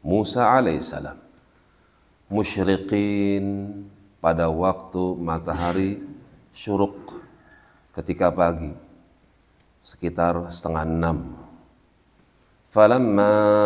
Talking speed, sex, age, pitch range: 55 wpm, male, 40-59, 85-95 Hz